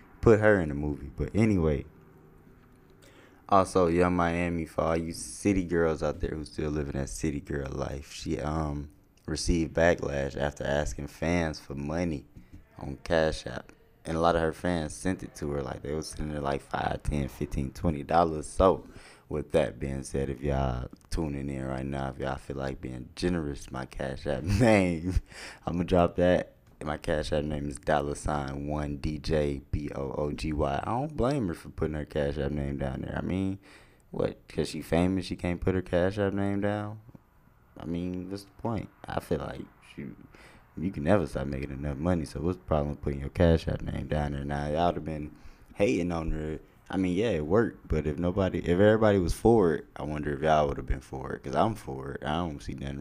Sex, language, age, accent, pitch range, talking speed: male, English, 20-39, American, 70-90 Hz, 205 wpm